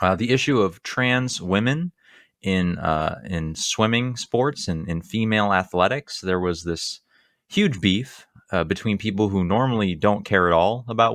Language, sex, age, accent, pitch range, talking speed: English, male, 20-39, American, 85-110 Hz, 160 wpm